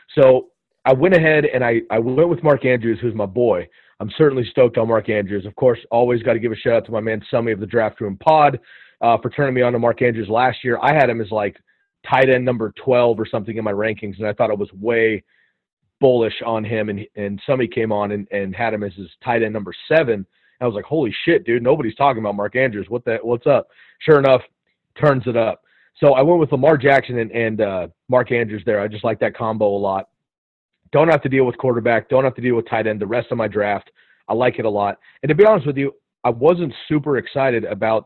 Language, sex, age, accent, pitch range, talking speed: English, male, 30-49, American, 110-125 Hz, 250 wpm